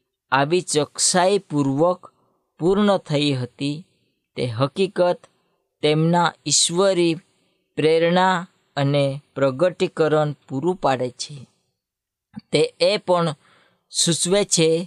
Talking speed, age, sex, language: 45 wpm, 20-39, female, Hindi